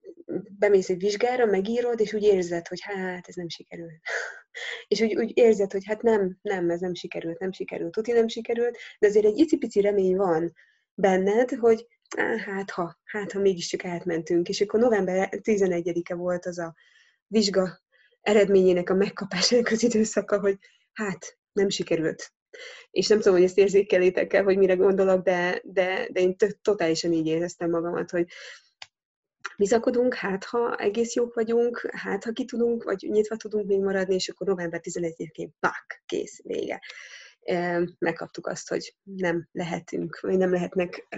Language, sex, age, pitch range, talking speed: Hungarian, female, 20-39, 175-220 Hz, 155 wpm